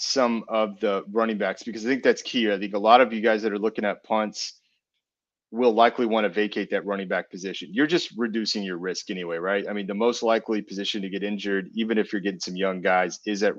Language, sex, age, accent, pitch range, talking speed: English, male, 30-49, American, 100-115 Hz, 245 wpm